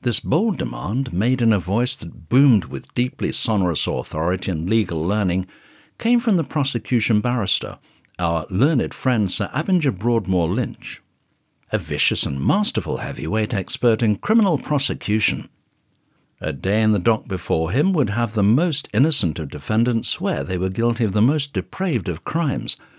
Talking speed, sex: 160 wpm, male